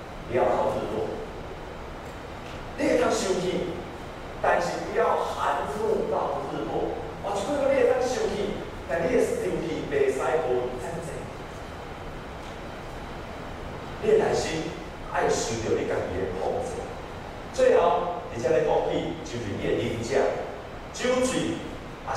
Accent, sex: native, male